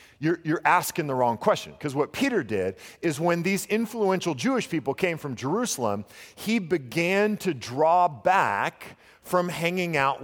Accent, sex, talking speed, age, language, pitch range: American, male, 160 wpm, 40-59, English, 155-205 Hz